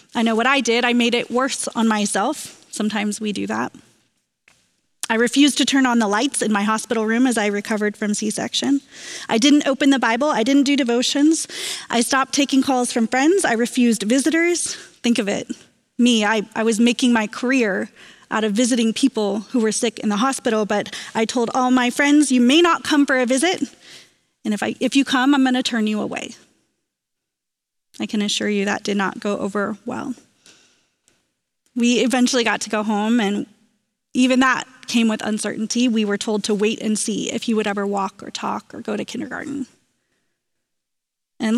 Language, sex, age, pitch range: English, female, 30-49, 215-265 Hz